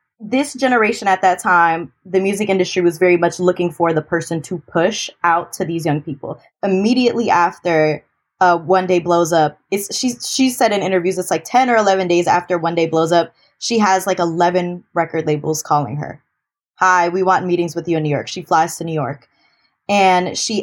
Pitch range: 180-250 Hz